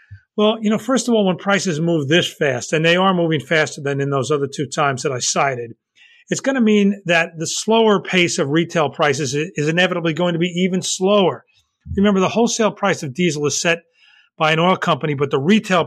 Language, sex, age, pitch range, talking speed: English, male, 40-59, 150-190 Hz, 220 wpm